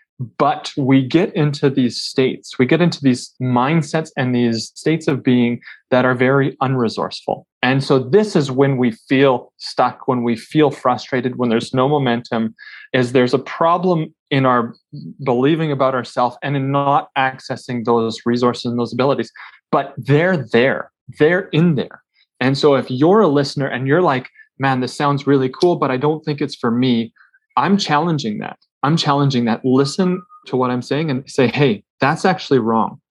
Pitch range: 120-145 Hz